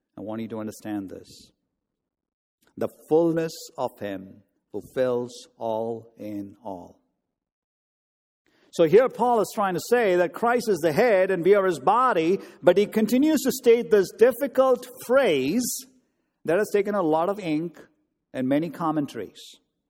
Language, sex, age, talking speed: English, male, 50-69, 150 wpm